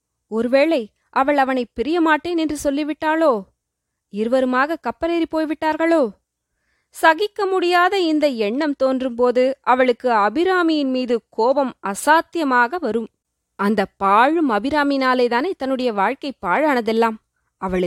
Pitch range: 245-330 Hz